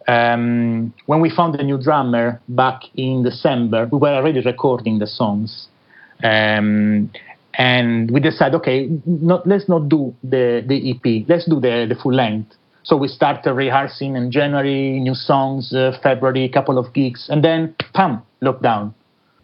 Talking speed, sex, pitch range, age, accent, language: 160 wpm, male, 120-145 Hz, 30-49, Italian, English